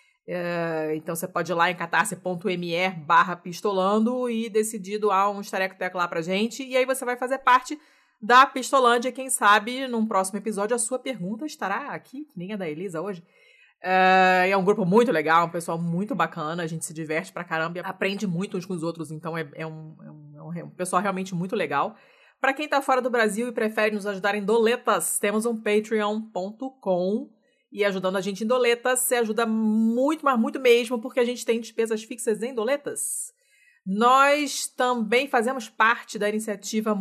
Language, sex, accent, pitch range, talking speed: Portuguese, female, Brazilian, 175-240 Hz, 195 wpm